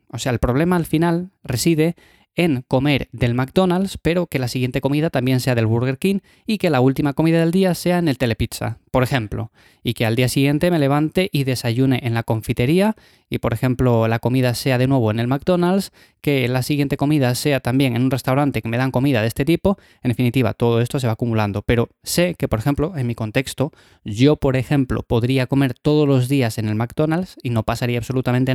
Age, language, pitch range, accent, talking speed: 20-39, Spanish, 120-150 Hz, Spanish, 215 wpm